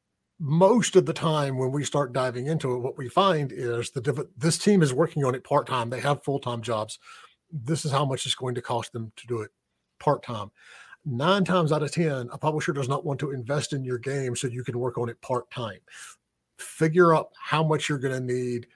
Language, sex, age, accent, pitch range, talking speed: English, male, 40-59, American, 120-145 Hz, 220 wpm